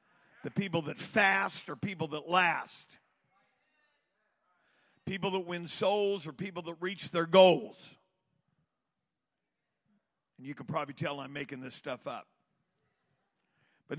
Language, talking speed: English, 125 wpm